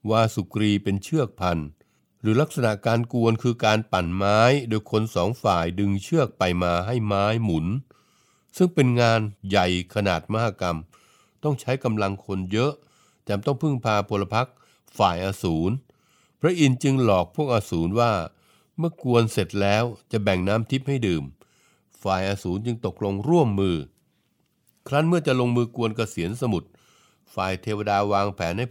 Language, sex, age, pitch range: Thai, male, 60-79, 100-125 Hz